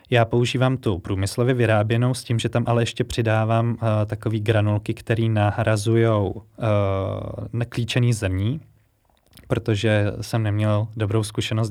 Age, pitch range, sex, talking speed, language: 20-39, 105-115 Hz, male, 130 wpm, Slovak